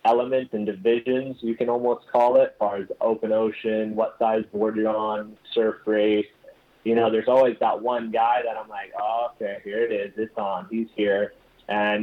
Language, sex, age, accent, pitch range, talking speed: English, male, 20-39, American, 105-120 Hz, 200 wpm